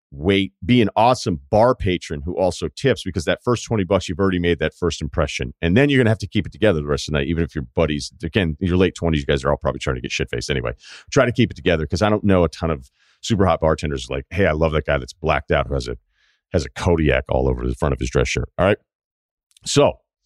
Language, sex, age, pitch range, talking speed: English, male, 40-59, 80-110 Hz, 285 wpm